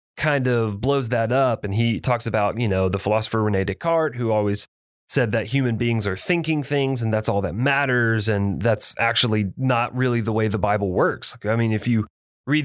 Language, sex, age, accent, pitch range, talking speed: English, male, 30-49, American, 100-125 Hz, 210 wpm